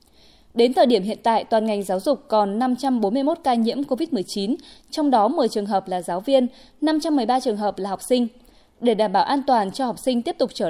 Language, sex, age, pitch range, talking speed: Vietnamese, female, 20-39, 205-275 Hz, 220 wpm